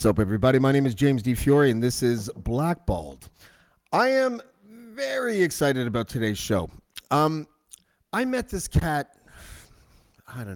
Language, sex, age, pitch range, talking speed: English, male, 30-49, 115-155 Hz, 155 wpm